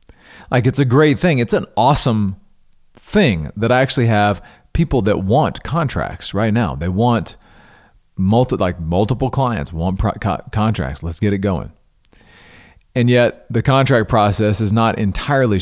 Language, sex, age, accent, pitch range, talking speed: English, male, 40-59, American, 100-125 Hz, 160 wpm